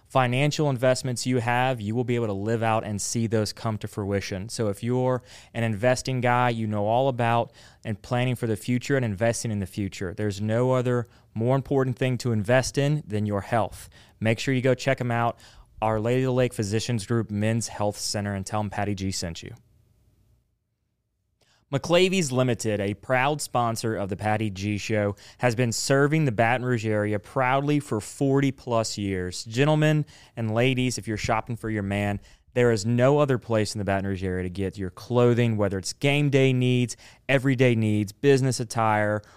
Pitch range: 105-125 Hz